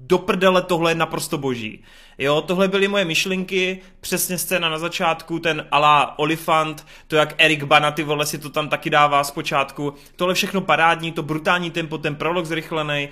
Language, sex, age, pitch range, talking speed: Czech, male, 20-39, 135-165 Hz, 170 wpm